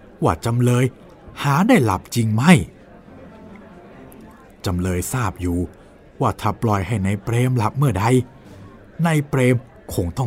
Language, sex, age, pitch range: Thai, male, 60-79, 95-145 Hz